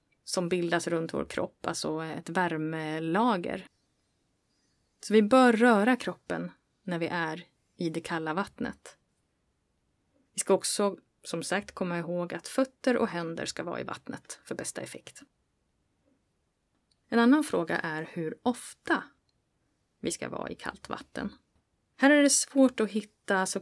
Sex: female